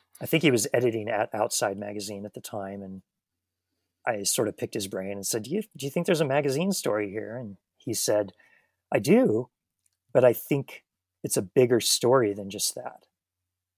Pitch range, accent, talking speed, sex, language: 95-115 Hz, American, 195 wpm, male, English